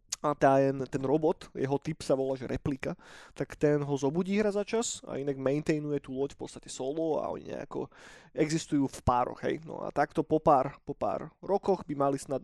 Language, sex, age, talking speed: Slovak, male, 20-39, 200 wpm